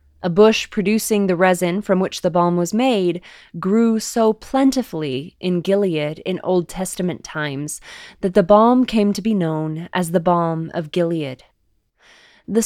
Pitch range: 170-210 Hz